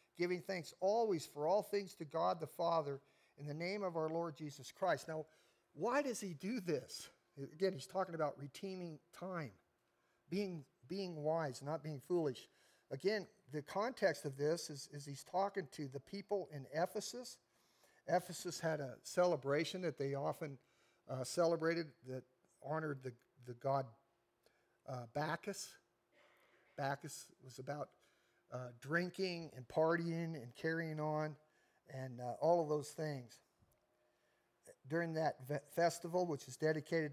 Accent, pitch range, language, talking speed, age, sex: American, 140-175 Hz, English, 140 wpm, 50-69, male